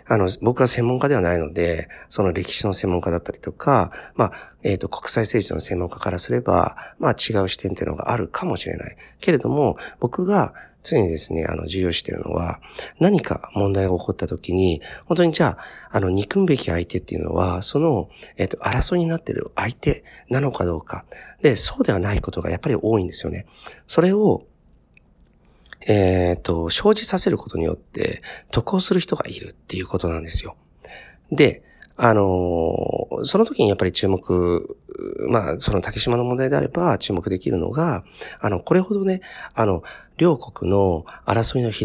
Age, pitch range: 40-59, 90-140 Hz